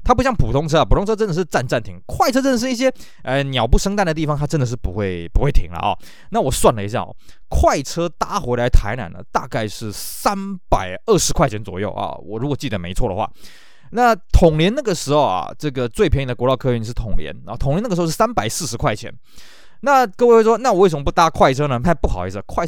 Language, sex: Chinese, male